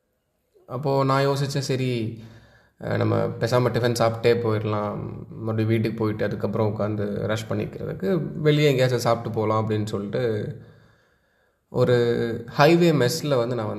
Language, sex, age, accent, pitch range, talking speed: Tamil, male, 20-39, native, 105-140 Hz, 115 wpm